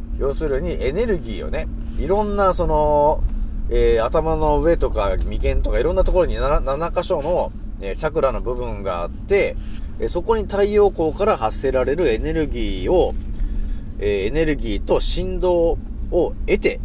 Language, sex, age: Japanese, male, 40-59